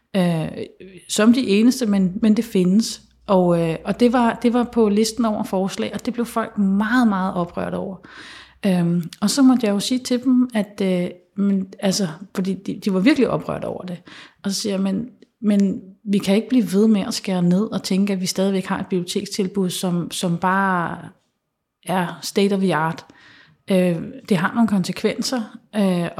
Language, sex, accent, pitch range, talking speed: Danish, female, native, 195-240 Hz, 195 wpm